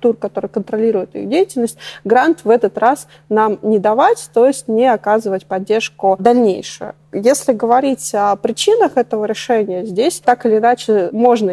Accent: native